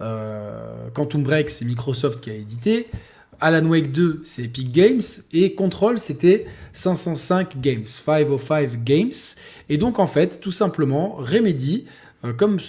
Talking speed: 140 wpm